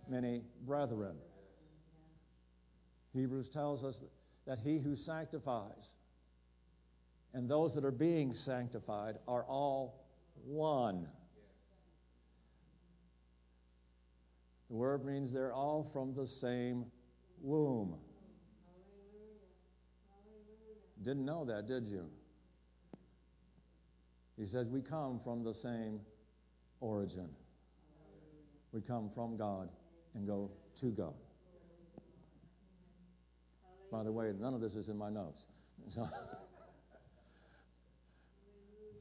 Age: 60-79